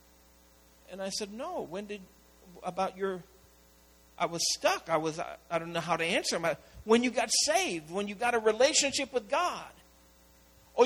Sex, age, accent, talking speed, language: male, 50-69, American, 180 wpm, English